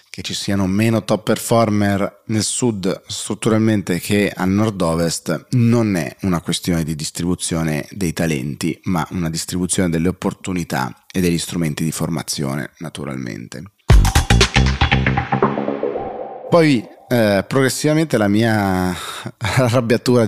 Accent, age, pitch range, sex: native, 30-49, 85-110 Hz, male